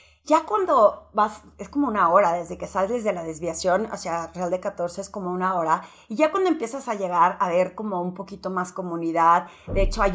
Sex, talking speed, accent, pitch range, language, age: female, 220 wpm, Mexican, 180-240 Hz, Spanish, 30-49